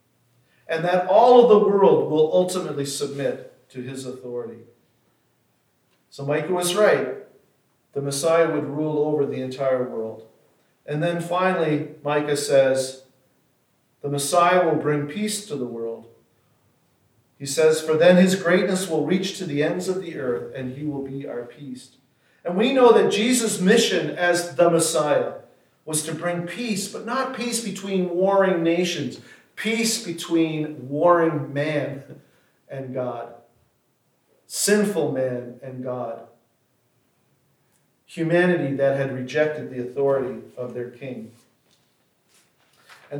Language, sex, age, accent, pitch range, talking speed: English, male, 40-59, American, 130-180 Hz, 135 wpm